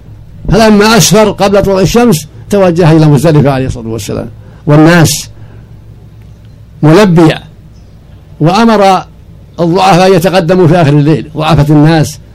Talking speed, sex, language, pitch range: 100 wpm, male, Arabic, 145-180 Hz